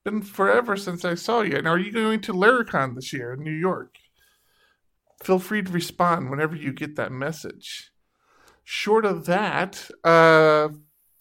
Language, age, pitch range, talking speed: English, 50-69, 155-195 Hz, 160 wpm